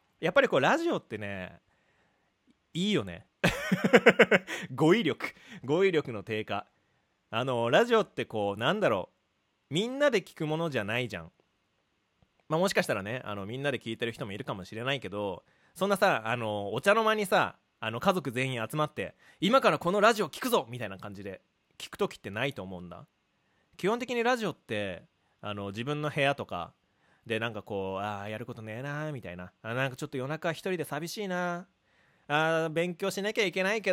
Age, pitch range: 30-49, 105-170 Hz